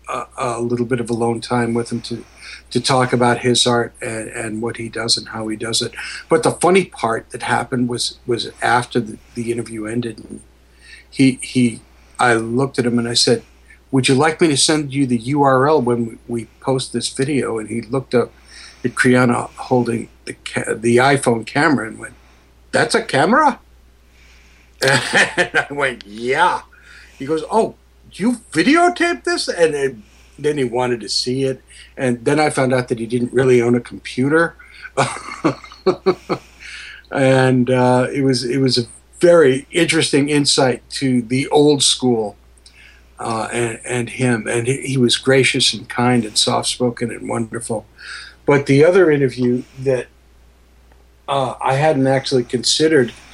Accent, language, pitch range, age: American, English, 115-135 Hz, 60-79